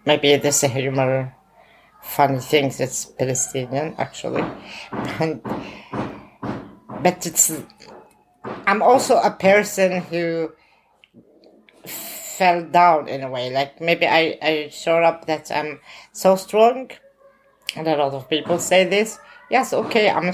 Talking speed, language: 125 wpm, English